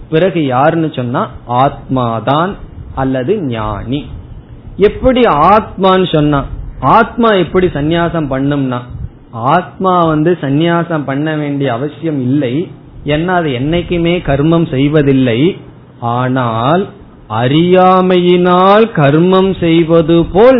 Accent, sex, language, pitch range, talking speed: native, male, Tamil, 130-175 Hz, 80 wpm